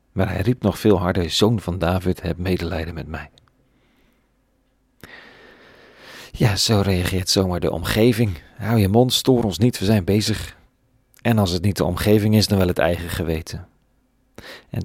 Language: Dutch